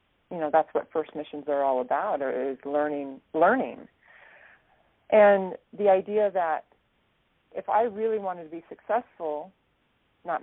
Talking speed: 140 wpm